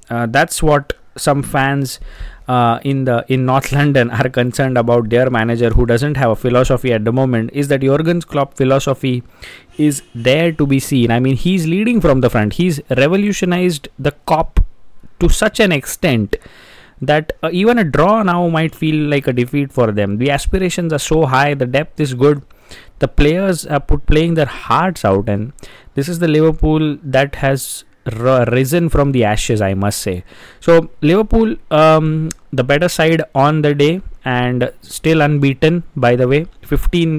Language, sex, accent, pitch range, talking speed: English, male, Indian, 120-155 Hz, 175 wpm